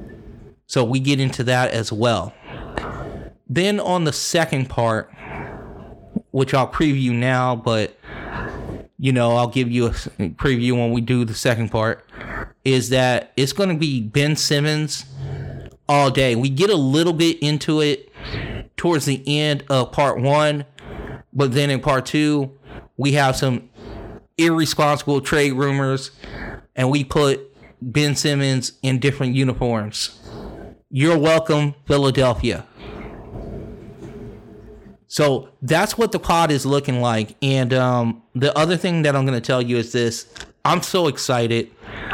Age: 30-49